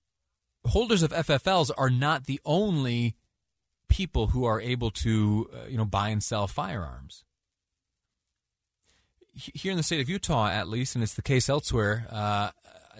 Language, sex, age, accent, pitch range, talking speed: English, male, 30-49, American, 100-120 Hz, 155 wpm